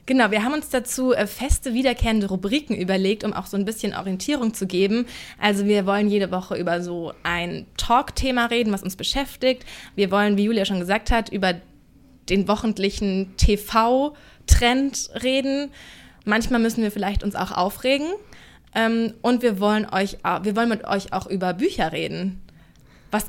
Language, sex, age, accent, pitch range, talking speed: German, female, 20-39, German, 195-235 Hz, 155 wpm